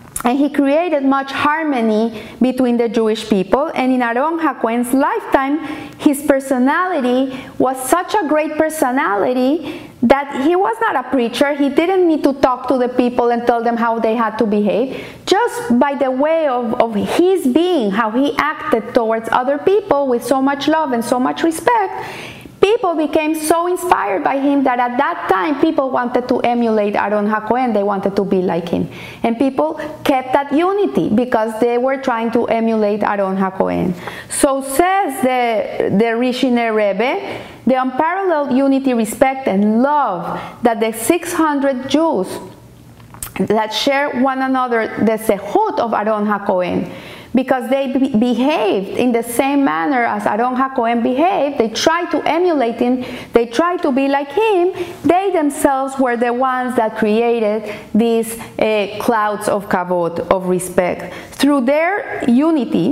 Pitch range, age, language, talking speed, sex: 230-300 Hz, 30-49, English, 155 wpm, female